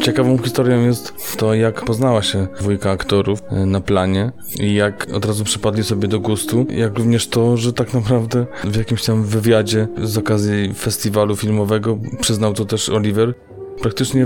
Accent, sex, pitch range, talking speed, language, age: native, male, 100-115 Hz, 160 wpm, Polish, 20-39